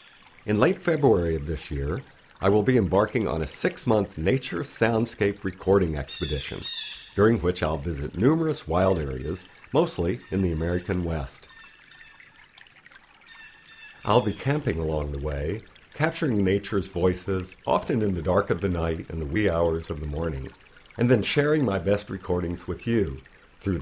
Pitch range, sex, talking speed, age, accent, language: 80-105 Hz, male, 155 wpm, 50-69, American, English